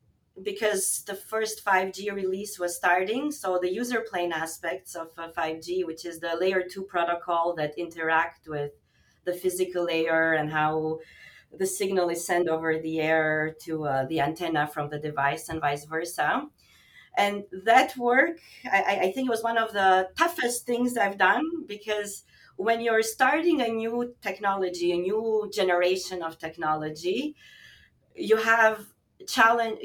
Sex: female